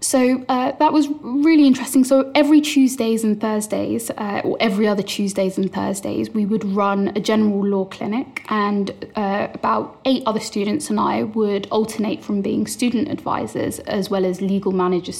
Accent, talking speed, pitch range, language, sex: British, 175 wpm, 195-225 Hz, English, female